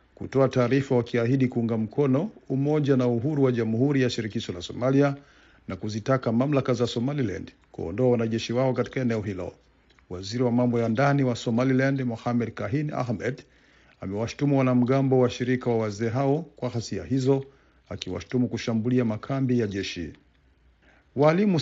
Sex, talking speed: male, 145 wpm